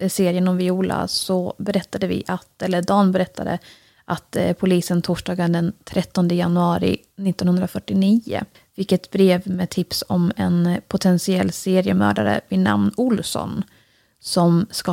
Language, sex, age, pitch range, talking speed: English, female, 30-49, 180-205 Hz, 125 wpm